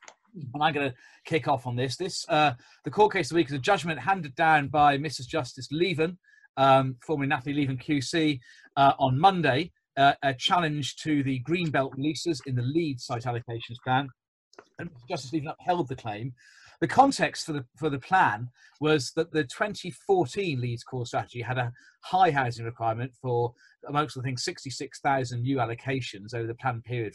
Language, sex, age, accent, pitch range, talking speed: English, male, 40-59, British, 125-155 Hz, 185 wpm